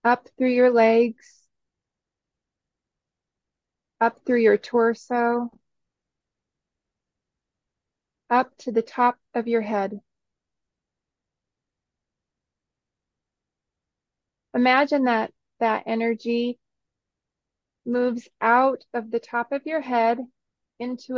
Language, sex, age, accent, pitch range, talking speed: English, female, 30-49, American, 225-245 Hz, 80 wpm